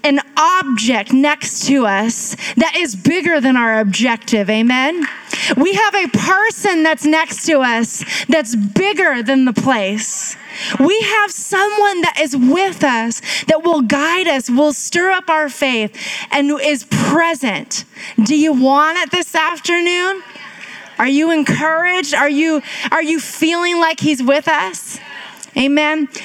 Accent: American